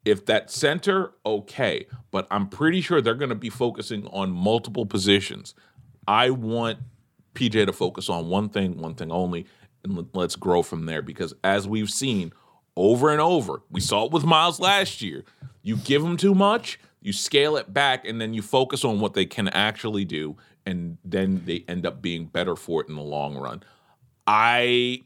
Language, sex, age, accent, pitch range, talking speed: English, male, 40-59, American, 95-125 Hz, 190 wpm